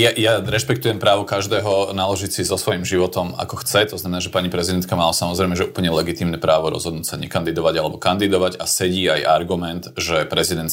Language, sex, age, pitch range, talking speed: Slovak, male, 30-49, 90-115 Hz, 190 wpm